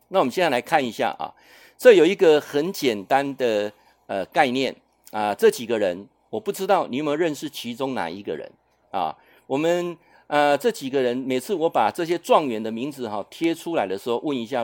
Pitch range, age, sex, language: 125-195 Hz, 50-69, male, Chinese